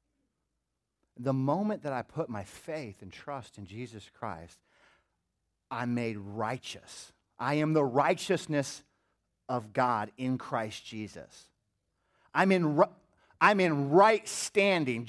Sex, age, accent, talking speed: male, 40-59, American, 115 wpm